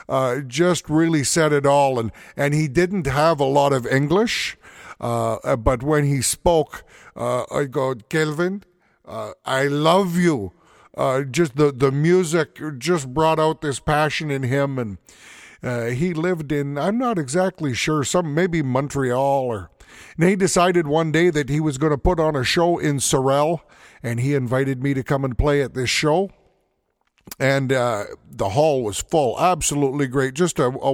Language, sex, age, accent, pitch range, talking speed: English, male, 50-69, American, 135-165 Hz, 175 wpm